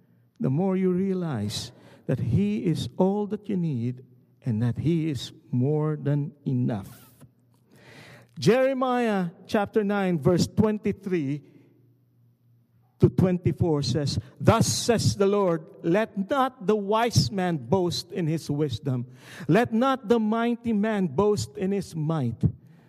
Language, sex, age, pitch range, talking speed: English, male, 50-69, 125-185 Hz, 125 wpm